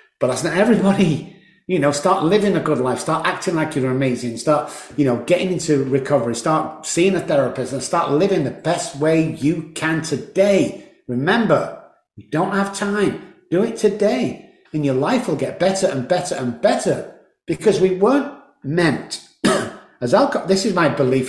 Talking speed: 175 wpm